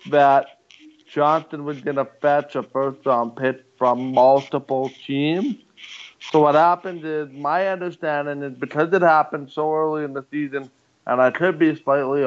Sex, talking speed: male, 150 wpm